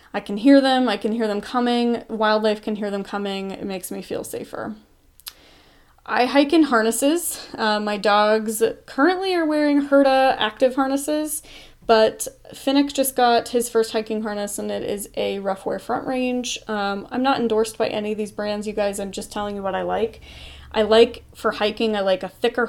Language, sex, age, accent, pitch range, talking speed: English, female, 20-39, American, 190-230 Hz, 195 wpm